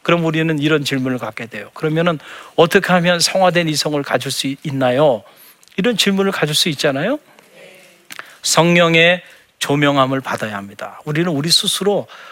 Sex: male